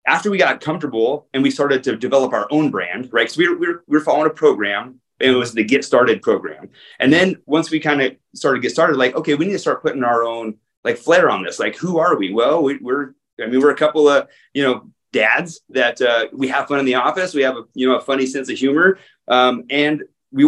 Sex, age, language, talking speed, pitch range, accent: male, 30-49, English, 265 wpm, 120-150 Hz, American